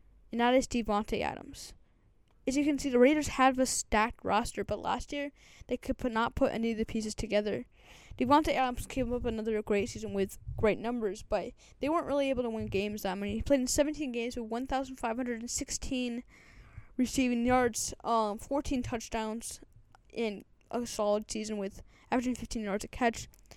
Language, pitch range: English, 220-255 Hz